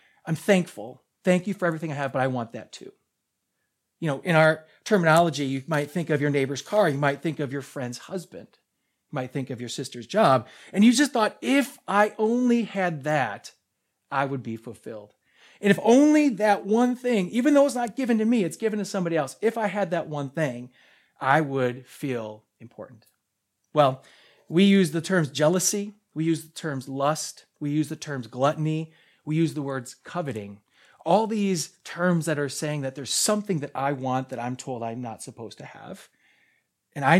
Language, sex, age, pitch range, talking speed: English, male, 40-59, 130-185 Hz, 200 wpm